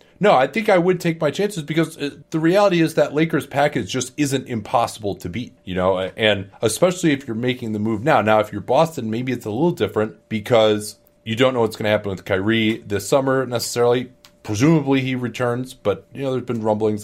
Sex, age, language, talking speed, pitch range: male, 30-49, English, 215 wpm, 100-130 Hz